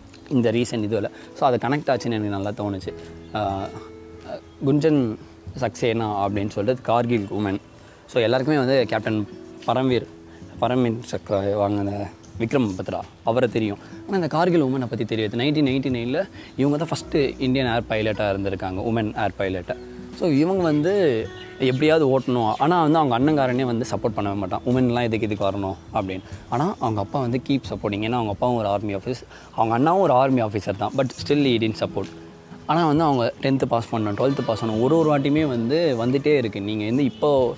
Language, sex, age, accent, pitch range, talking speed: Tamil, male, 20-39, native, 105-130 Hz, 170 wpm